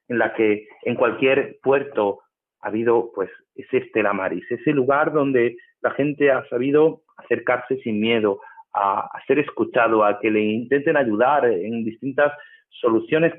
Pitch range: 110-145 Hz